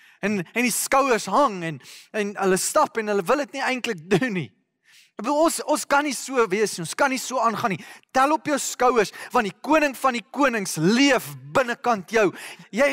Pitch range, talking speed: 210-275 Hz, 205 wpm